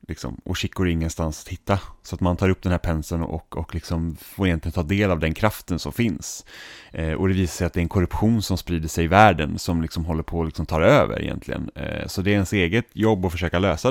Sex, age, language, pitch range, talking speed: male, 10-29, Swedish, 90-110 Hz, 260 wpm